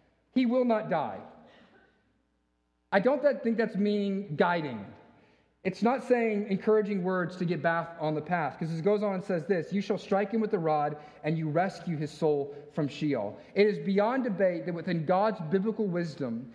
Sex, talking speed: male, 190 wpm